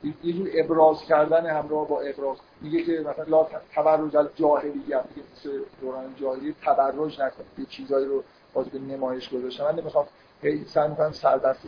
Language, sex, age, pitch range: Persian, male, 50-69, 150-180 Hz